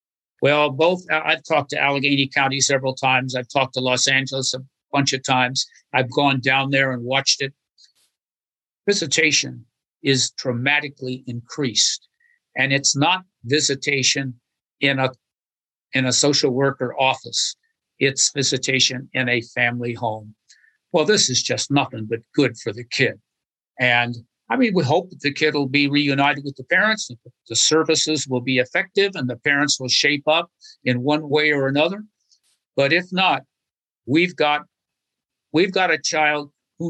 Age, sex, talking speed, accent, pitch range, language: 60-79, male, 155 wpm, American, 130-155 Hz, English